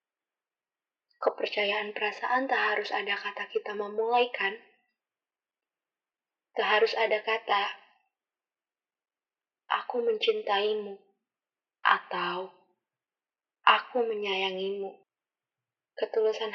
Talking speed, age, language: 65 wpm, 20-39, Indonesian